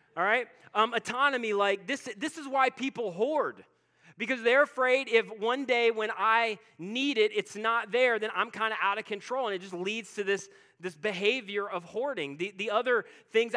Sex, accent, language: male, American, English